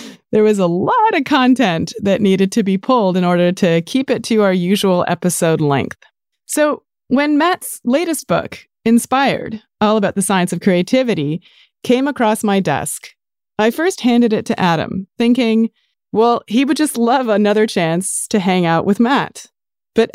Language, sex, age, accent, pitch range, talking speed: English, female, 30-49, American, 180-240 Hz, 170 wpm